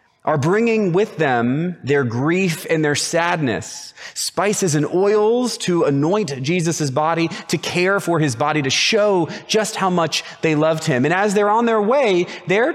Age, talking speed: 30-49, 170 wpm